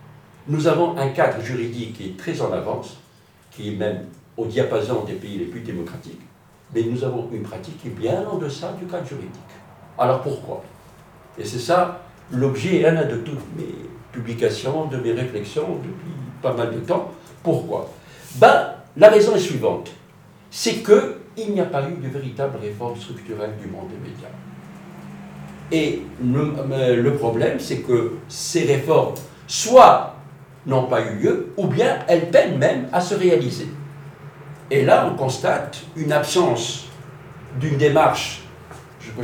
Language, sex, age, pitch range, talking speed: Arabic, male, 60-79, 125-165 Hz, 155 wpm